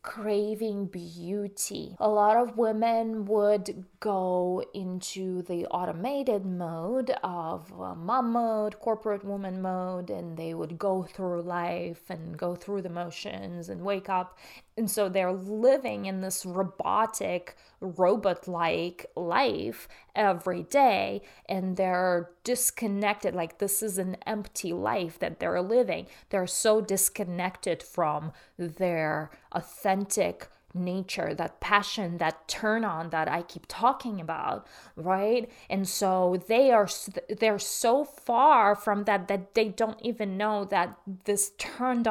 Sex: female